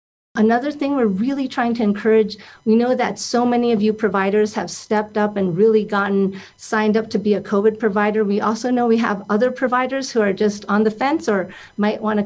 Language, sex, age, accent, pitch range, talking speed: English, female, 40-59, American, 200-230 Hz, 215 wpm